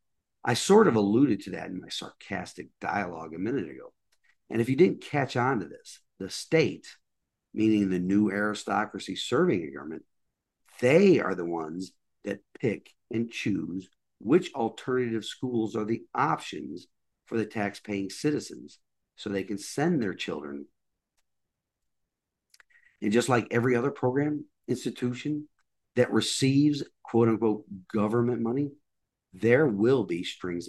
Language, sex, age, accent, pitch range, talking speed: English, male, 50-69, American, 100-125 Hz, 140 wpm